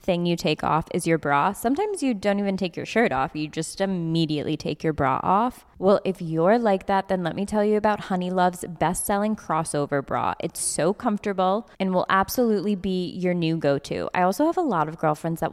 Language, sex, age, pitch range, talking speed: English, female, 20-39, 165-210 Hz, 215 wpm